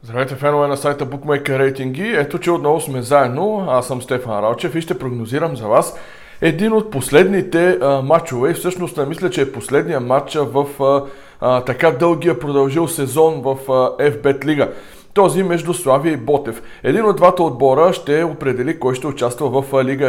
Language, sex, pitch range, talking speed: Bulgarian, male, 135-175 Hz, 175 wpm